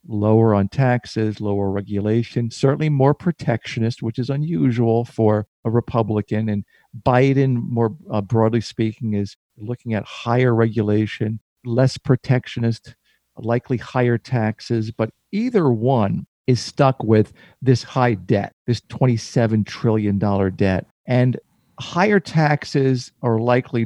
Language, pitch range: English, 105-130 Hz